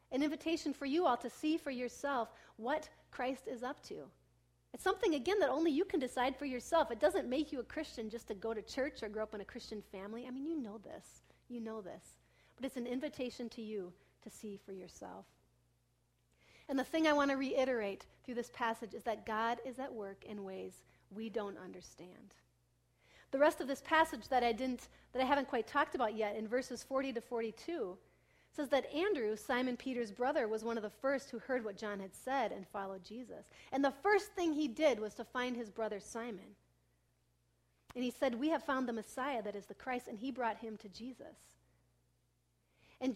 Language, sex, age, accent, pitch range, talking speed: English, female, 40-59, American, 210-275 Hz, 210 wpm